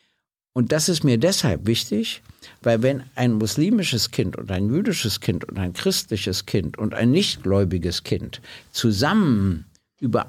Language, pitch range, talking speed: German, 110-145 Hz, 145 wpm